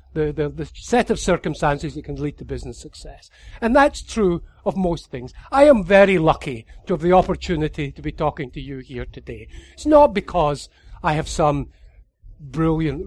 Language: English